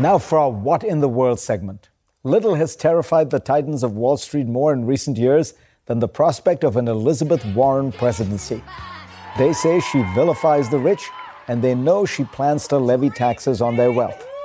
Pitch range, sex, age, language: 120-155 Hz, male, 50-69, English